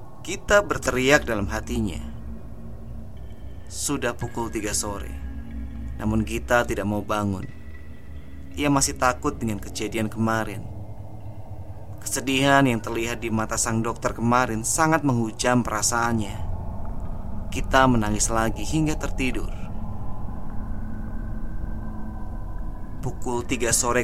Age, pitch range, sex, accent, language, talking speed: 30-49, 100-120 Hz, male, native, Indonesian, 95 wpm